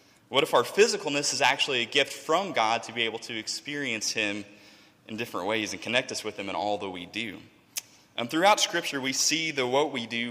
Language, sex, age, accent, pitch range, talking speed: English, male, 20-39, American, 115-145 Hz, 220 wpm